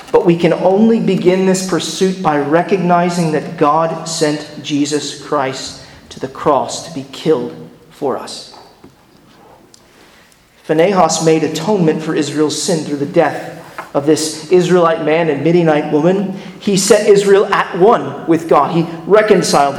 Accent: American